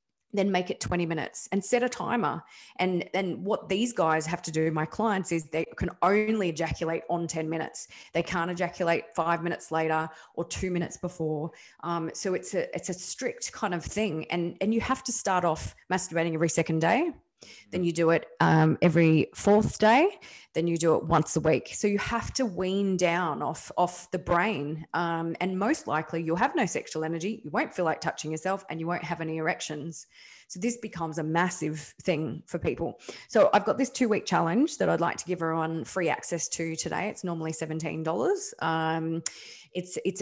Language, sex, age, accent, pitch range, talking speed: English, female, 20-39, Australian, 160-195 Hz, 200 wpm